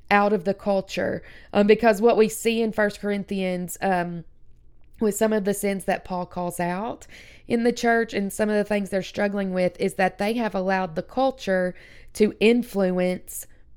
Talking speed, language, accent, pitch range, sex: 185 wpm, English, American, 180-215 Hz, female